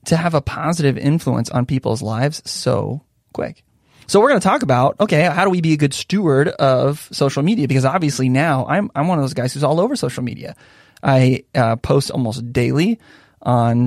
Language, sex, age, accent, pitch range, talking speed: English, male, 20-39, American, 130-180 Hz, 205 wpm